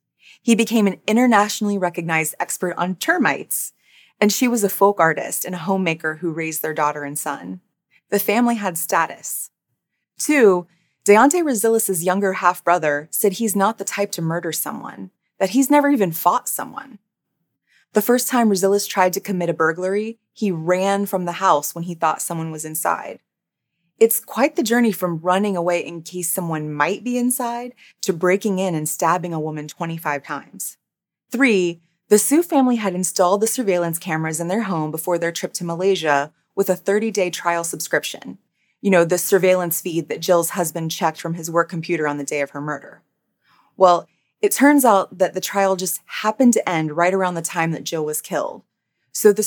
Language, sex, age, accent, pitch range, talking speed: English, female, 20-39, American, 165-210 Hz, 180 wpm